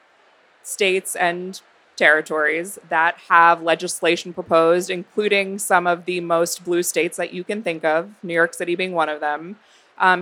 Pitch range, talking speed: 170-200 Hz, 160 wpm